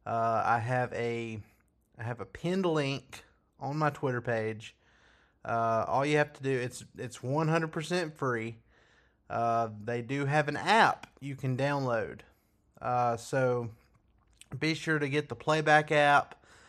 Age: 30-49